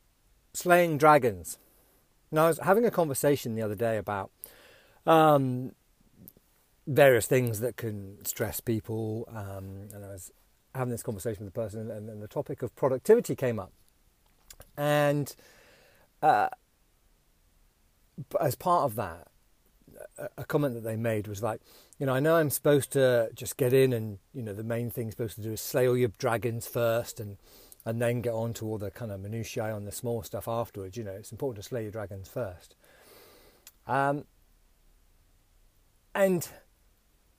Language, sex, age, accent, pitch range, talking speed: English, male, 40-59, British, 100-130 Hz, 165 wpm